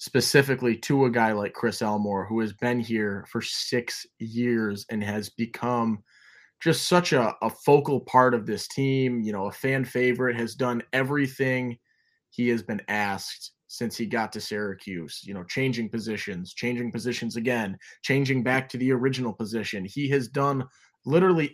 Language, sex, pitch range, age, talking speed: English, male, 105-125 Hz, 20-39, 165 wpm